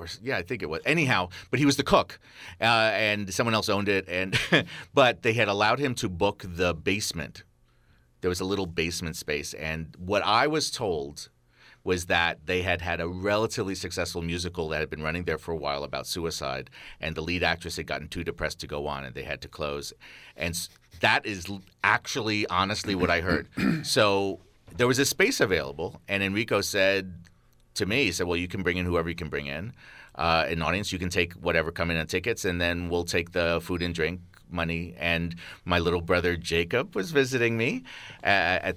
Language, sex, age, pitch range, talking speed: English, male, 40-59, 85-100 Hz, 205 wpm